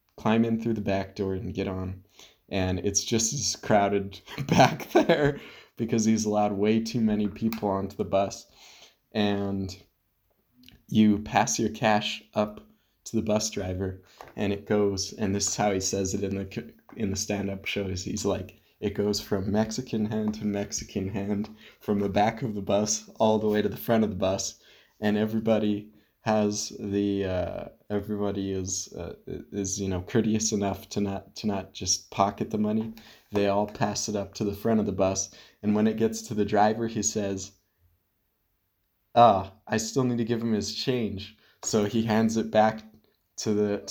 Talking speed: 185 wpm